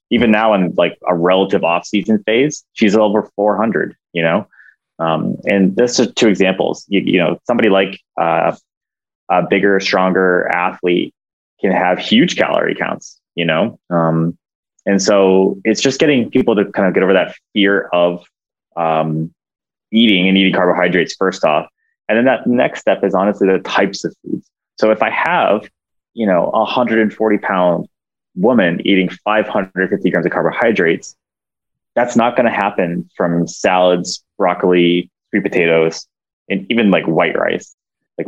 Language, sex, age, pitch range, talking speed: English, male, 20-39, 85-100 Hz, 155 wpm